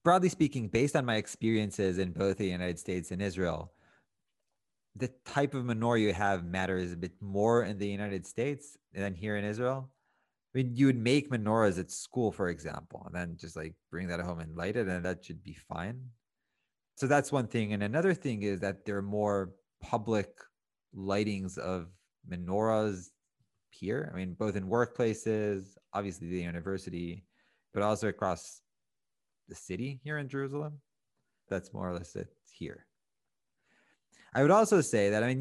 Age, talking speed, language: 30-49, 175 wpm, English